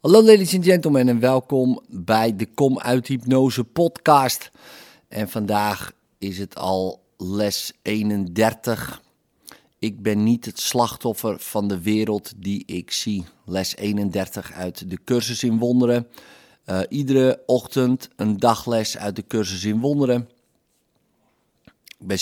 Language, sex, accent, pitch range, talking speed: Dutch, male, Dutch, 95-125 Hz, 130 wpm